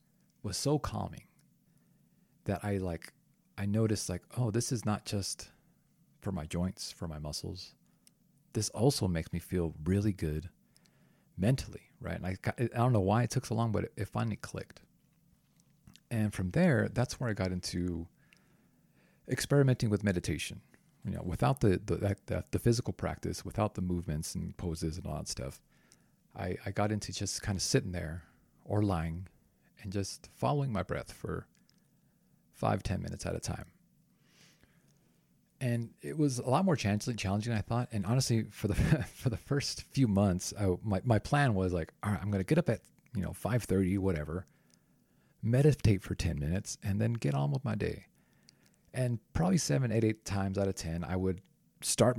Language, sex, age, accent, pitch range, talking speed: English, male, 40-59, American, 90-120 Hz, 185 wpm